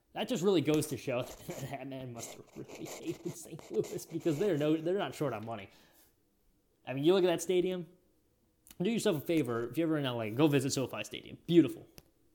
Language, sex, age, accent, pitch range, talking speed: English, male, 20-39, American, 120-165 Hz, 215 wpm